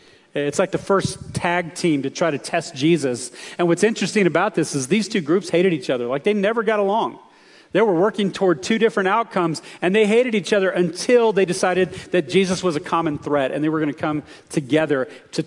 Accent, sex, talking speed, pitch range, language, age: American, male, 220 wpm, 165-215 Hz, English, 40-59